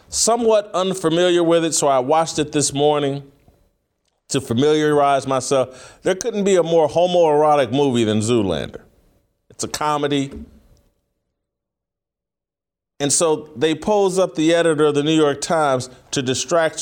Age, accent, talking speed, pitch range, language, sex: 40-59, American, 140 wpm, 130-165 Hz, English, male